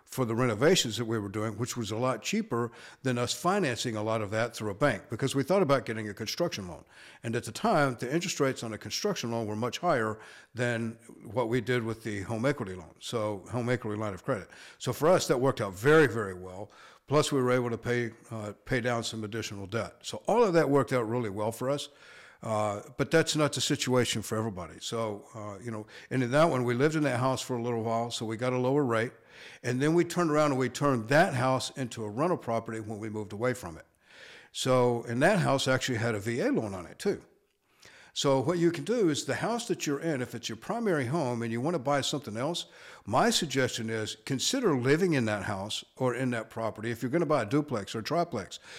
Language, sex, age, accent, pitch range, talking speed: English, male, 60-79, American, 110-145 Hz, 245 wpm